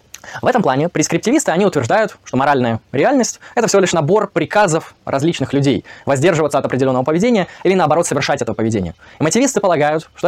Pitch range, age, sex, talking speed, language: 130-185 Hz, 20-39, male, 165 wpm, Russian